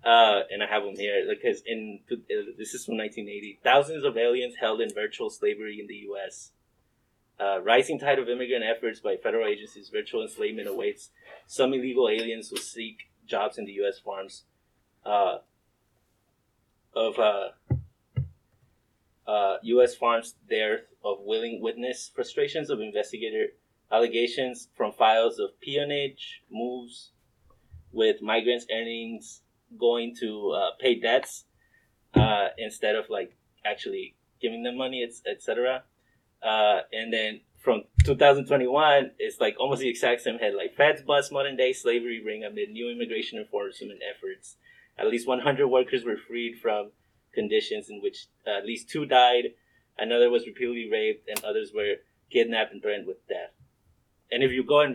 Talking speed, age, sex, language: 150 wpm, 20-39, male, English